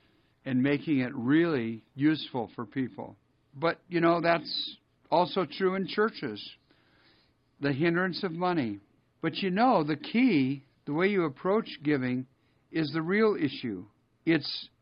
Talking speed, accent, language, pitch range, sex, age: 140 wpm, American, English, 135-175 Hz, male, 60-79